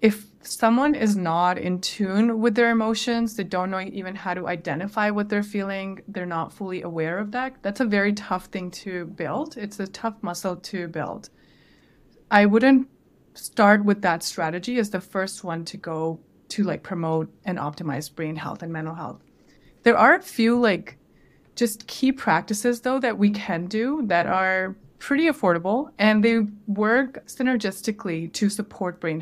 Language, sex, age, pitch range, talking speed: English, female, 20-39, 175-210 Hz, 175 wpm